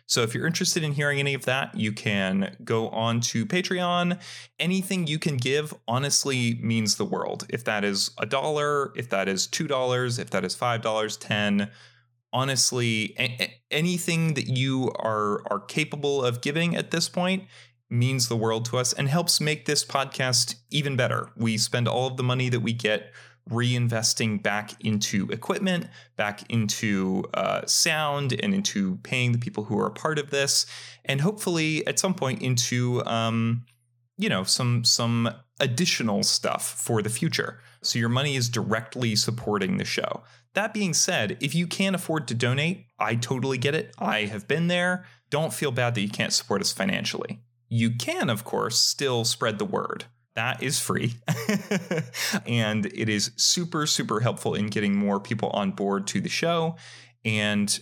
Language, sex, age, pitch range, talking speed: English, male, 30-49, 115-155 Hz, 175 wpm